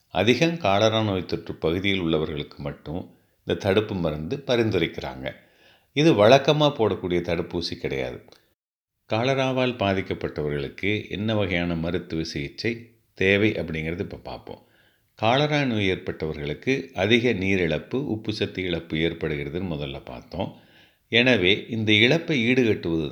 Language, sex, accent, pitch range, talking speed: Tamil, male, native, 85-115 Hz, 105 wpm